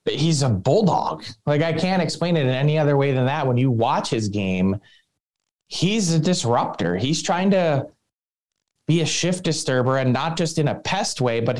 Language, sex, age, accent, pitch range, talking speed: English, male, 20-39, American, 120-155 Hz, 195 wpm